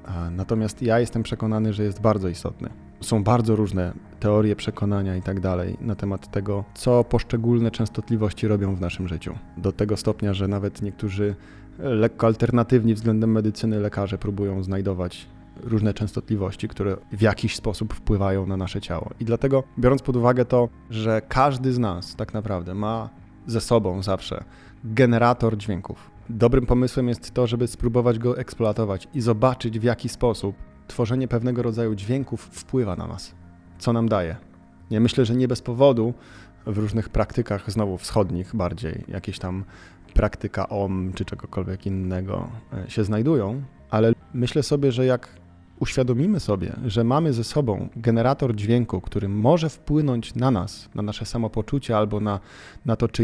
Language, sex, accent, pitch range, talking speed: Polish, male, native, 100-120 Hz, 155 wpm